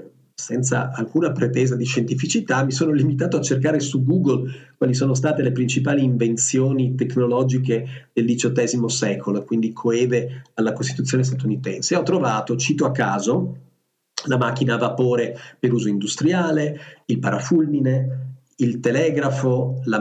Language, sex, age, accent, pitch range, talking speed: Italian, male, 40-59, native, 120-145 Hz, 135 wpm